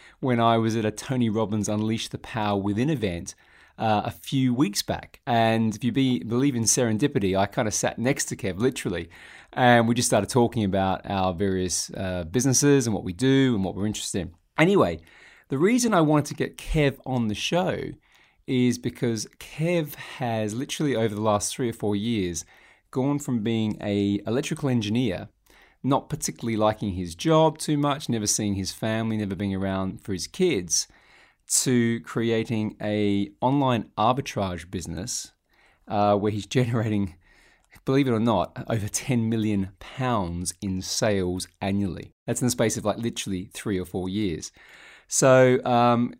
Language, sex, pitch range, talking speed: English, male, 100-125 Hz, 170 wpm